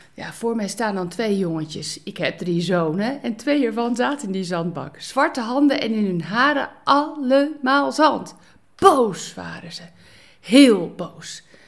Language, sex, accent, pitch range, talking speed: Dutch, female, Dutch, 190-280 Hz, 160 wpm